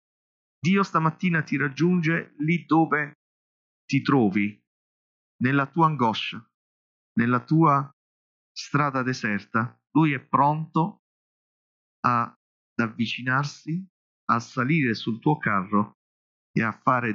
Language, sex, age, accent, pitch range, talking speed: Italian, male, 40-59, native, 135-190 Hz, 100 wpm